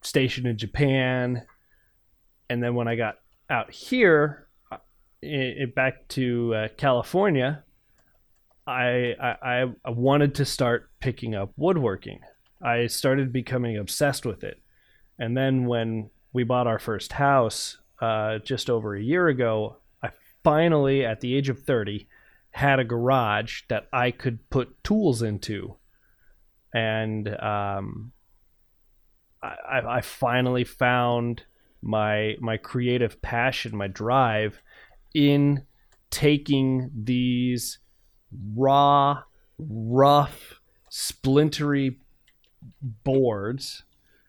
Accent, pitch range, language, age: American, 110-135 Hz, English, 30-49